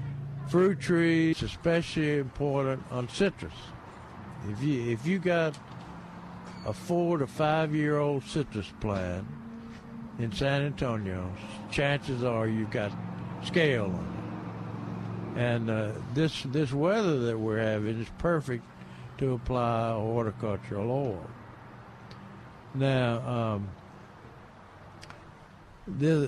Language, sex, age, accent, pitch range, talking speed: English, male, 60-79, American, 110-145 Hz, 105 wpm